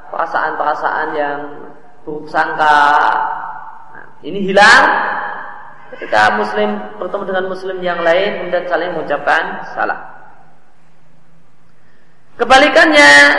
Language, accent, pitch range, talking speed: Indonesian, native, 160-205 Hz, 85 wpm